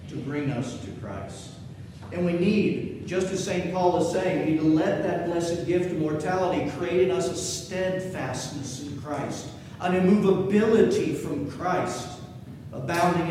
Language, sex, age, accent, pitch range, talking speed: English, male, 40-59, American, 160-195 Hz, 160 wpm